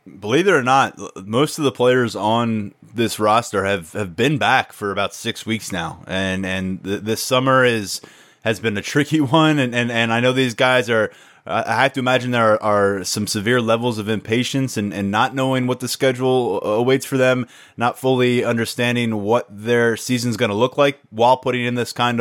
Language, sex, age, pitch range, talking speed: English, male, 20-39, 110-125 Hz, 205 wpm